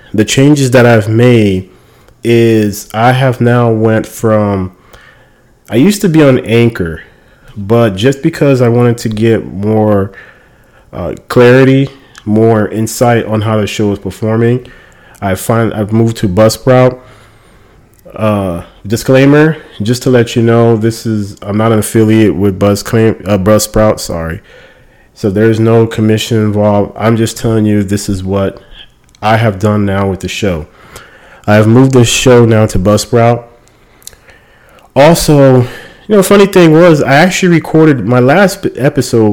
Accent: American